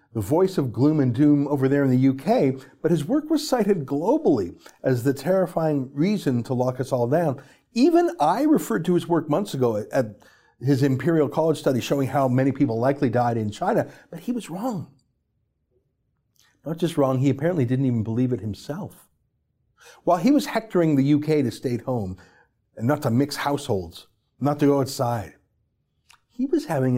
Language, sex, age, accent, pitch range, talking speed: English, male, 50-69, American, 125-170 Hz, 185 wpm